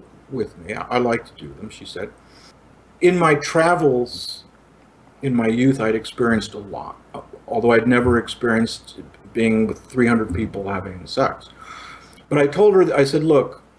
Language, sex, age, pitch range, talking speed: English, male, 50-69, 115-145 Hz, 155 wpm